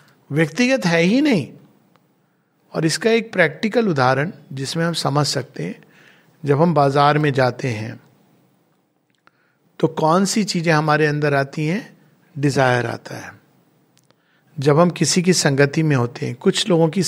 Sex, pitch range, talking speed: male, 145-190 Hz, 150 wpm